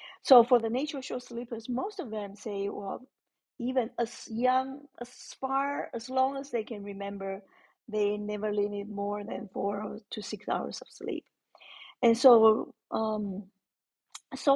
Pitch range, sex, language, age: 215-265 Hz, female, English, 40-59